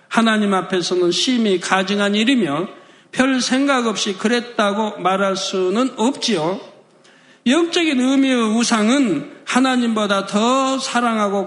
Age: 60-79